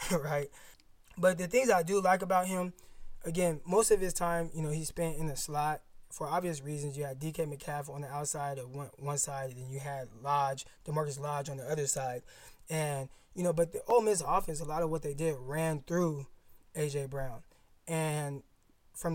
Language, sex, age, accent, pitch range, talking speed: English, male, 20-39, American, 145-175 Hz, 205 wpm